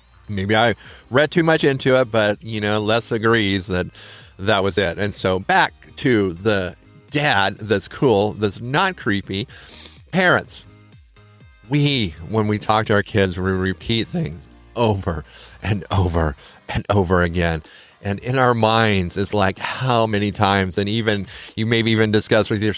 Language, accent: English, American